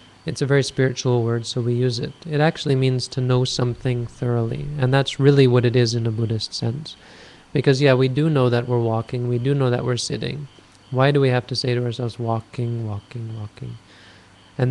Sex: male